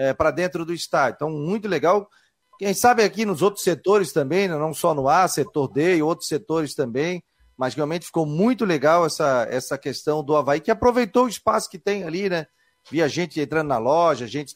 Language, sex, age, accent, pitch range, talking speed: Portuguese, male, 40-59, Brazilian, 135-180 Hz, 215 wpm